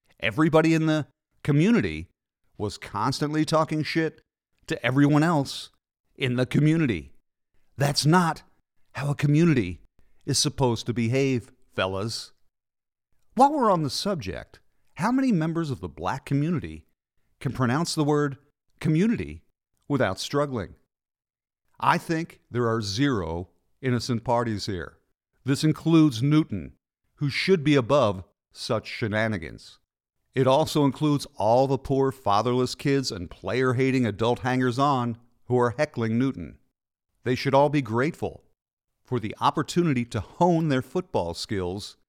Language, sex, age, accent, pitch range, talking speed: English, male, 50-69, American, 115-150 Hz, 125 wpm